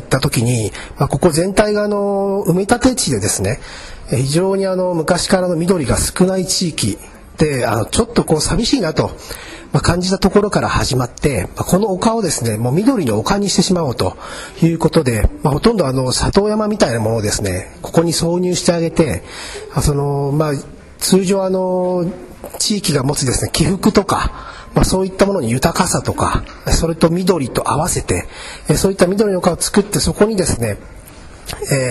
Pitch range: 120-190 Hz